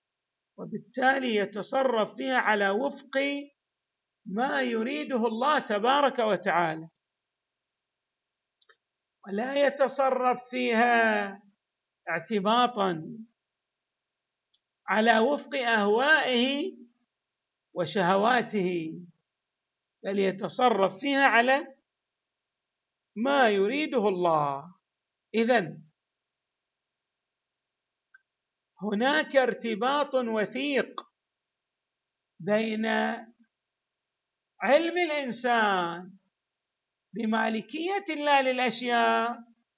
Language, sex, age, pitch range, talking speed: Arabic, male, 50-69, 210-260 Hz, 55 wpm